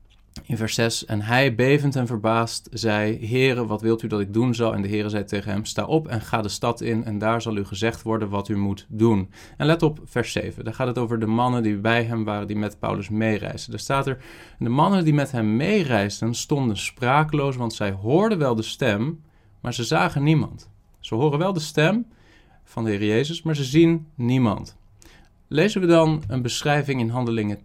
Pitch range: 110-140 Hz